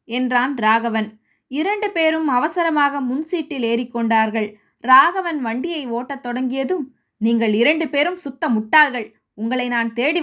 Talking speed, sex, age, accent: 110 wpm, female, 20-39, native